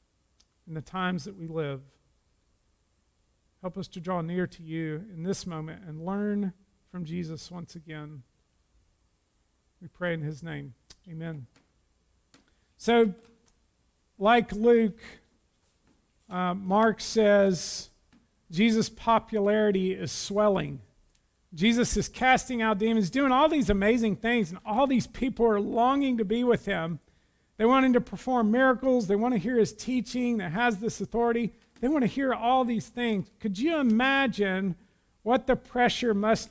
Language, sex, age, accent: English, male, 50-69, American